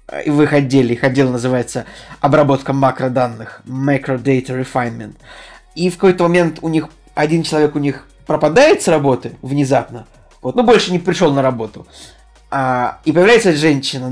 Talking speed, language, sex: 160 wpm, Russian, male